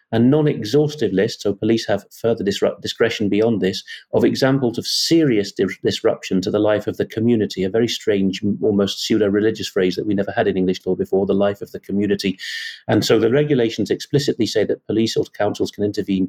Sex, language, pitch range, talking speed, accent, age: male, English, 95-115 Hz, 190 wpm, British, 40-59